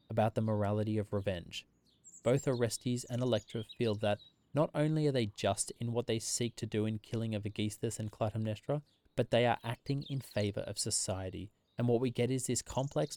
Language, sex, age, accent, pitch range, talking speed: English, male, 20-39, Australian, 105-125 Hz, 195 wpm